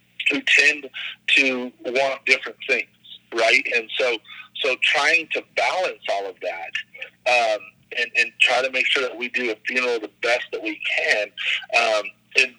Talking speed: 165 wpm